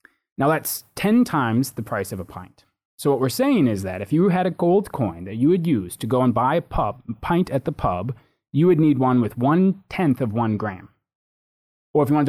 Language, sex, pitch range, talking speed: English, male, 110-160 Hz, 235 wpm